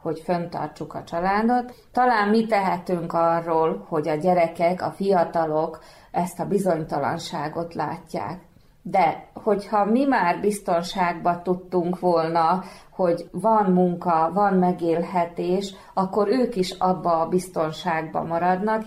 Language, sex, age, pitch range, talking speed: Hungarian, female, 30-49, 165-190 Hz, 115 wpm